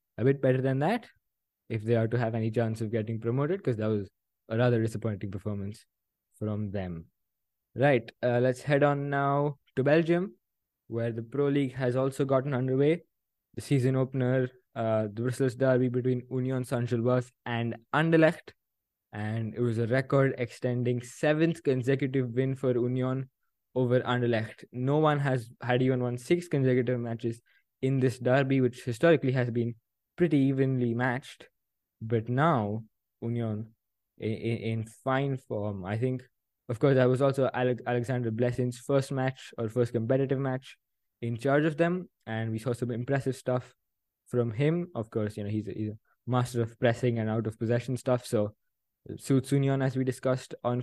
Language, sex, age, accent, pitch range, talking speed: English, male, 20-39, Indian, 115-135 Hz, 165 wpm